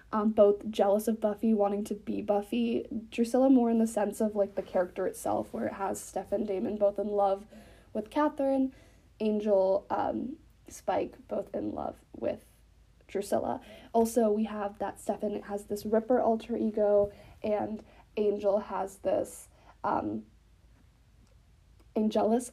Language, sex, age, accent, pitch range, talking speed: English, female, 20-39, American, 205-245 Hz, 140 wpm